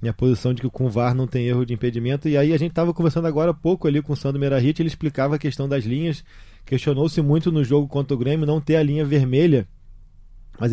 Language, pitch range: Portuguese, 125-150 Hz